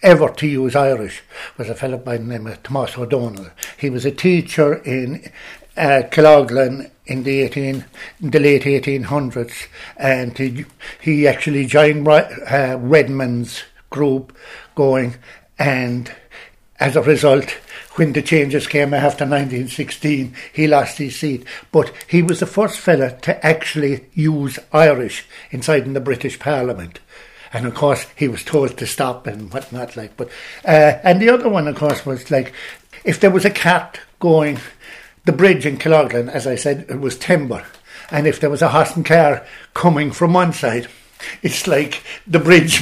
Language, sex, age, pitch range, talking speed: English, male, 60-79, 130-155 Hz, 165 wpm